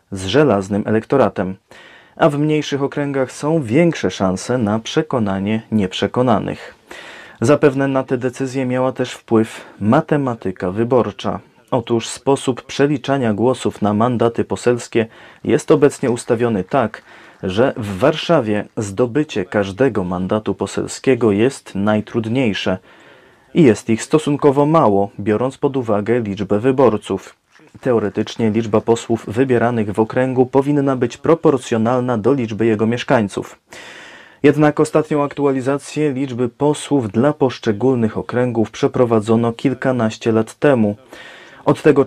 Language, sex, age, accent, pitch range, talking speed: Polish, male, 30-49, native, 110-135 Hz, 115 wpm